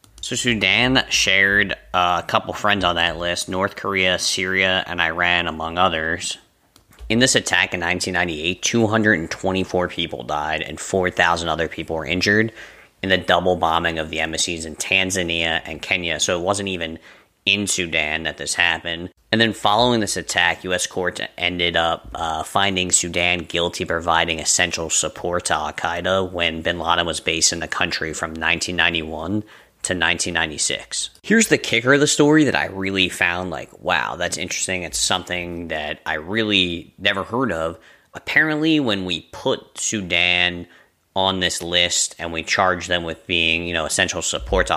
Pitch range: 85-100 Hz